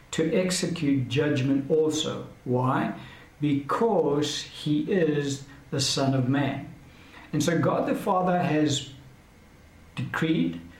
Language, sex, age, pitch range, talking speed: English, male, 60-79, 130-155 Hz, 105 wpm